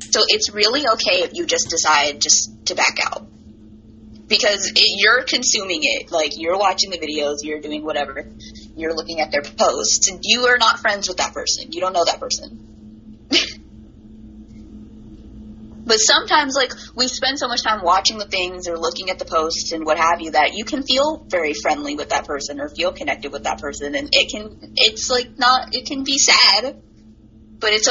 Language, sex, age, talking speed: English, female, 20-39, 190 wpm